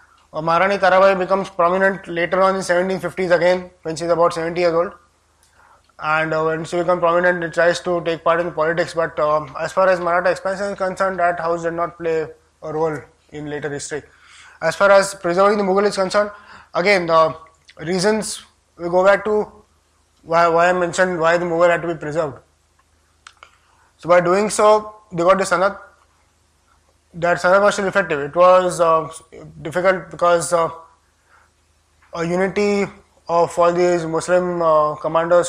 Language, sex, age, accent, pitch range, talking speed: English, male, 20-39, Indian, 160-185 Hz, 170 wpm